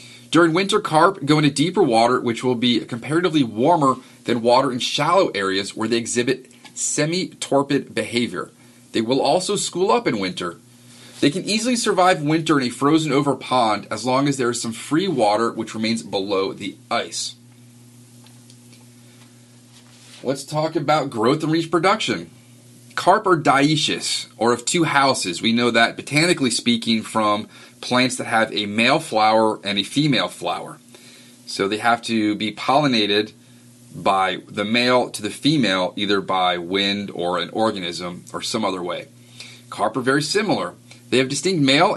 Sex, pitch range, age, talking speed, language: male, 115-145 Hz, 30-49, 155 wpm, English